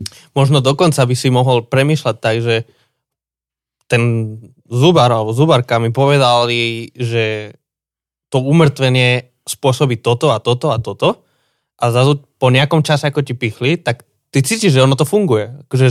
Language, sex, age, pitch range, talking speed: Slovak, male, 20-39, 120-160 Hz, 145 wpm